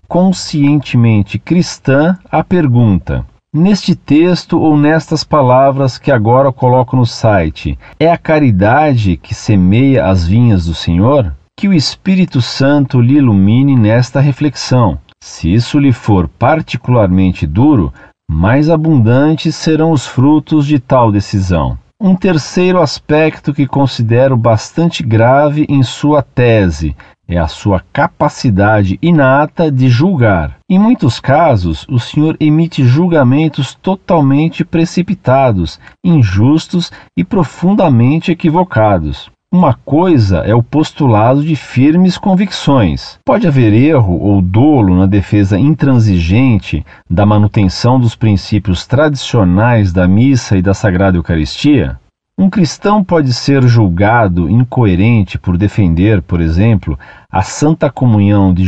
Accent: Brazilian